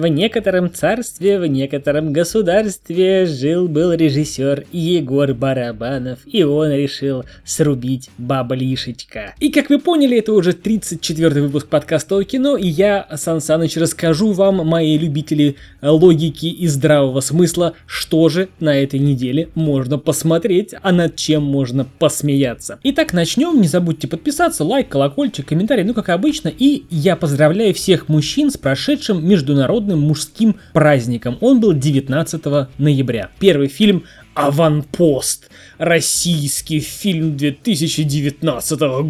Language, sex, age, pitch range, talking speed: Russian, male, 20-39, 145-180 Hz, 125 wpm